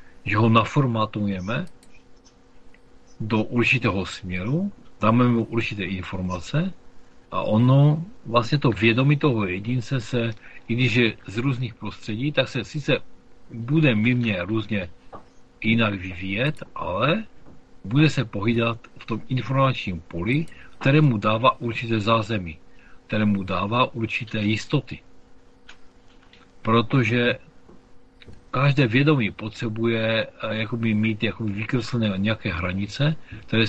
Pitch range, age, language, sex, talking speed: 105-125 Hz, 50-69, Czech, male, 105 wpm